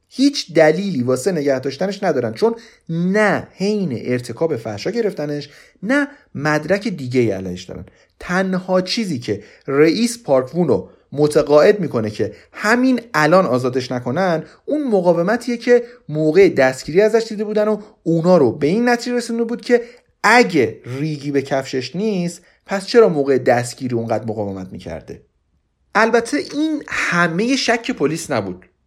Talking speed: 125 wpm